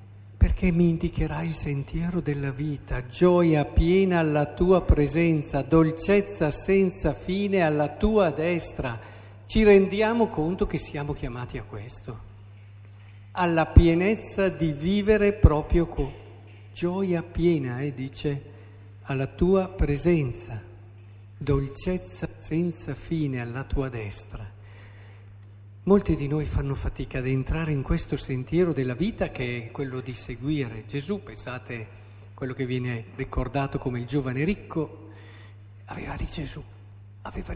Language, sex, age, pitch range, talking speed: Italian, male, 50-69, 110-180 Hz, 125 wpm